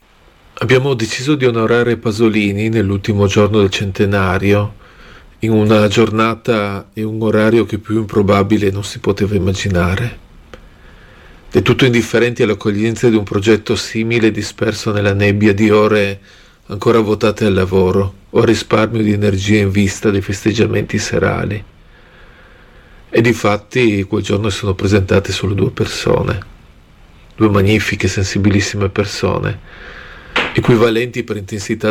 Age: 40-59